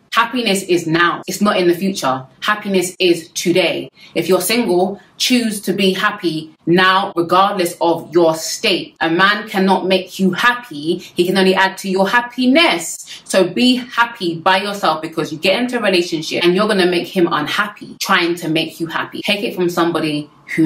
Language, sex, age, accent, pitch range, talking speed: English, female, 20-39, British, 160-195 Hz, 185 wpm